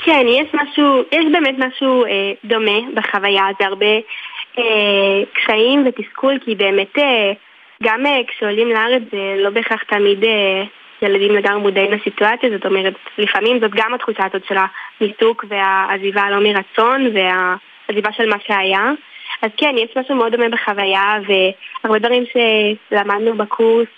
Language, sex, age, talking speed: Hebrew, female, 10-29, 145 wpm